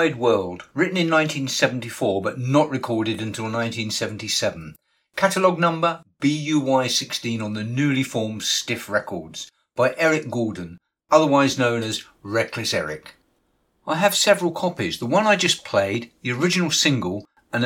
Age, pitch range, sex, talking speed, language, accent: 50-69, 110-155 Hz, male, 135 wpm, English, British